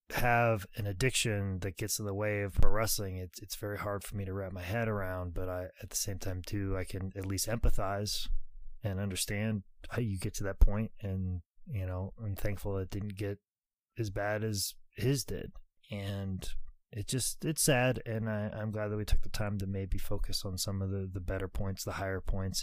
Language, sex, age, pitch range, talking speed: English, male, 20-39, 95-110 Hz, 210 wpm